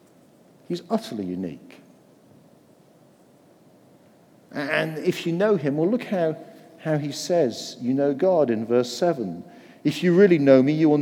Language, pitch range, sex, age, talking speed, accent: English, 140-195 Hz, male, 40-59, 145 wpm, British